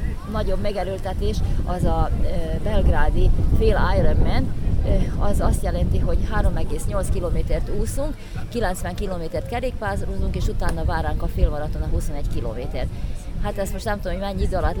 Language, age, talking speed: Hungarian, 30-49, 140 wpm